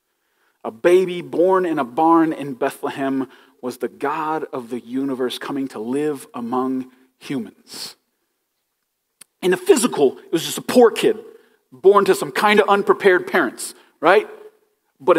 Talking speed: 145 wpm